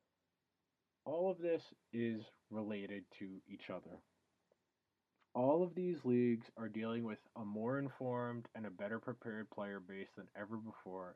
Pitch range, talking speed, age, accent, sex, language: 105-130 Hz, 145 wpm, 20-39, American, male, English